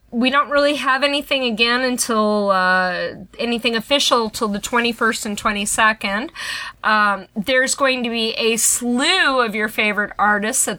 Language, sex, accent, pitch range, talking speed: English, female, American, 205-260 Hz, 150 wpm